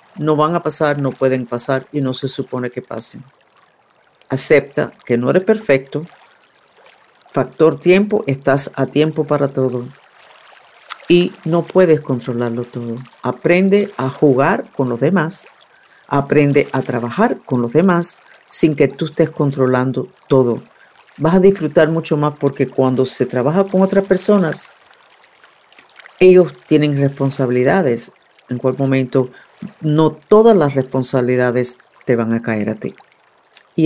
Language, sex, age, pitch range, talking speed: Spanish, female, 50-69, 130-185 Hz, 135 wpm